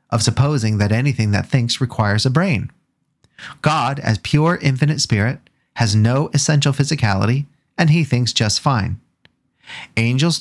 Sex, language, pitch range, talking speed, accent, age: male, English, 110-150 Hz, 140 wpm, American, 30-49